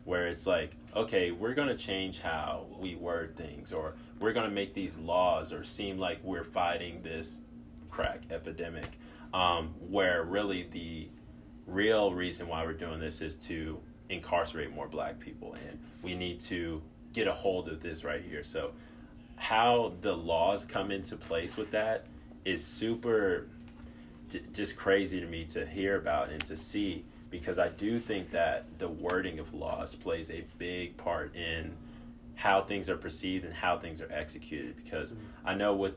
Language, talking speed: English, 170 wpm